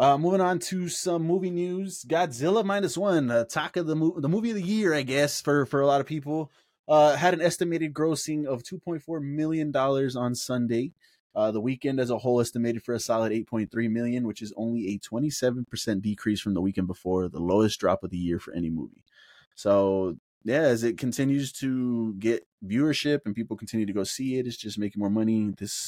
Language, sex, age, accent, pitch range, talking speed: English, male, 20-39, American, 110-155 Hz, 210 wpm